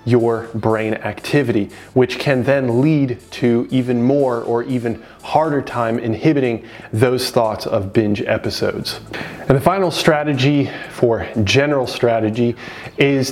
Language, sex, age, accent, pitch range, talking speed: English, male, 30-49, American, 115-145 Hz, 125 wpm